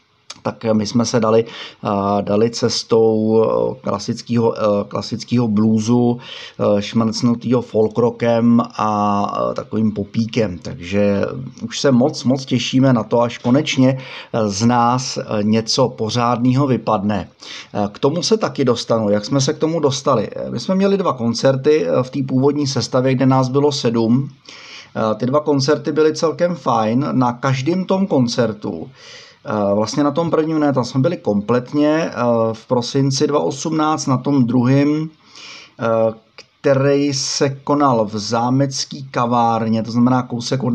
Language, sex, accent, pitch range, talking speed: Czech, male, native, 110-135 Hz, 130 wpm